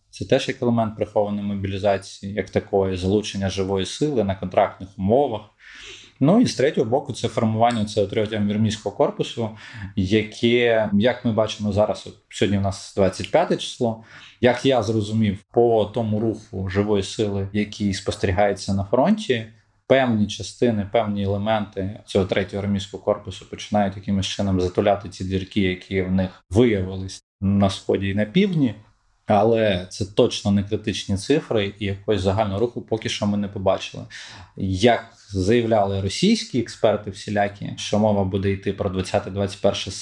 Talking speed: 145 wpm